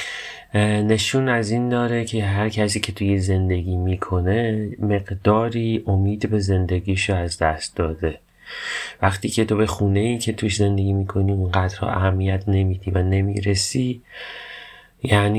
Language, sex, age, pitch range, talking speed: Persian, male, 30-49, 90-110 Hz, 130 wpm